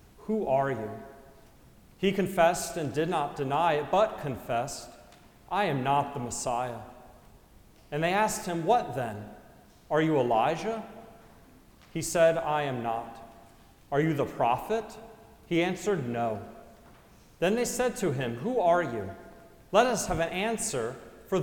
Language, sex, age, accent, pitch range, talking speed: English, male, 40-59, American, 130-175 Hz, 145 wpm